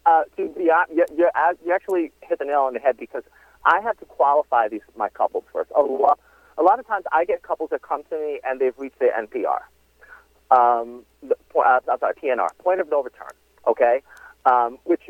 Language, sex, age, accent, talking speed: English, male, 40-59, American, 205 wpm